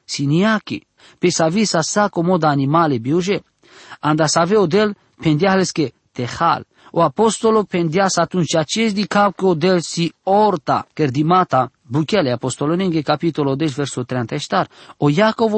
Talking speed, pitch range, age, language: 130 wpm, 145-190 Hz, 40-59, English